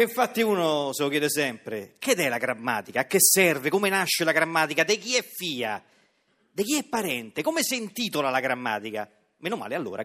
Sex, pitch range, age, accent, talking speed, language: male, 205-275 Hz, 40-59, native, 195 wpm, Italian